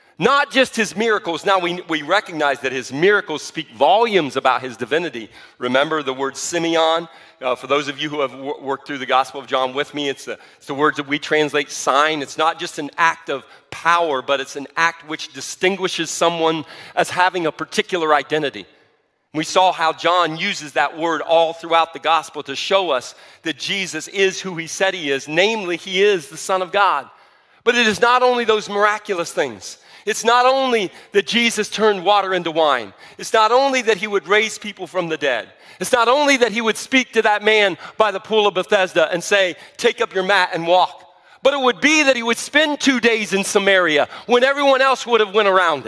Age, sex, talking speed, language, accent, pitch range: 40-59, male, 210 wpm, English, American, 160-230 Hz